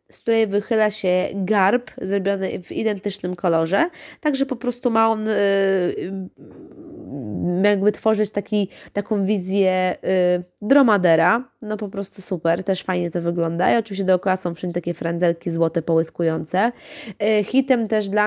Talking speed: 135 wpm